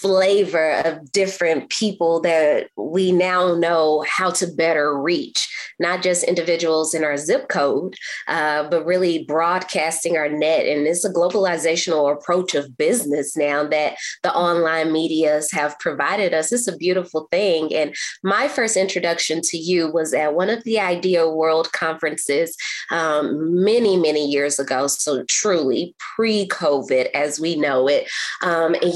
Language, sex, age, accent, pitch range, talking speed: English, female, 20-39, American, 165-205 Hz, 150 wpm